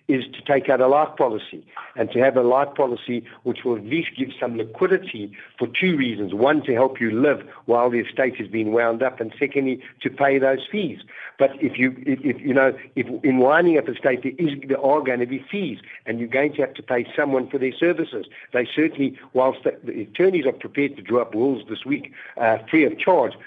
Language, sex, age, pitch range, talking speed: English, male, 50-69, 120-140 Hz, 230 wpm